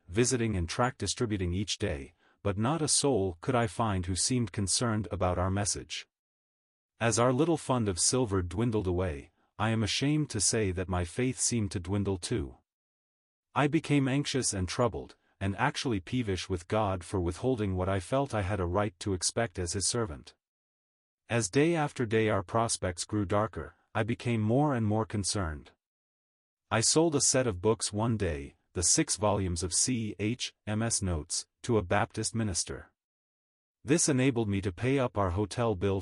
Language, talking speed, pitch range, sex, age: English, 175 wpm, 95-120 Hz, male, 40-59